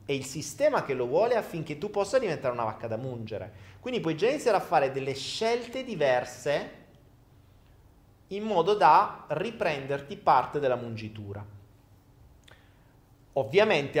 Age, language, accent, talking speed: 30-49, Italian, native, 135 wpm